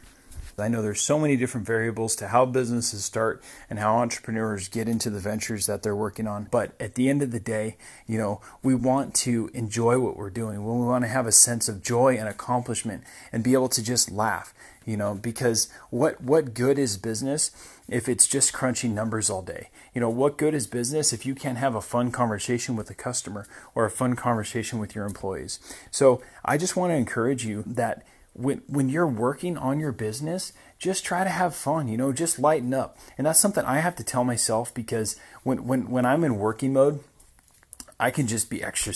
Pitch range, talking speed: 110-130 Hz, 215 wpm